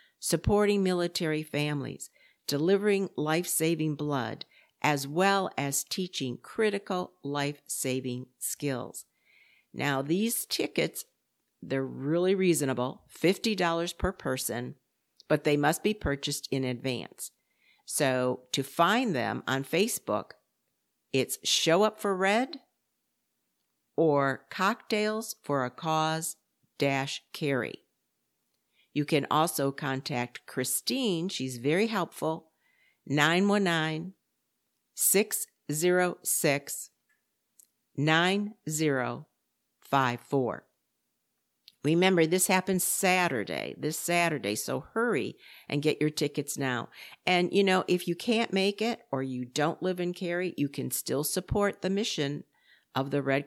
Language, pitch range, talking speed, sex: English, 140-185 Hz, 100 wpm, female